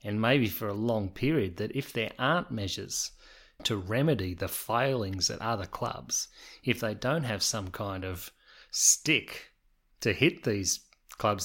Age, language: 30-49, English